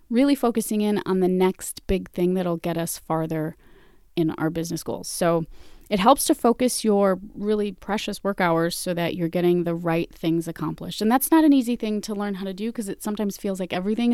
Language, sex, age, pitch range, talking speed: English, female, 30-49, 180-235 Hz, 215 wpm